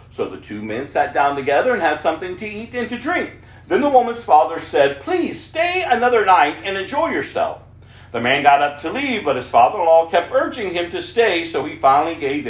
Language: English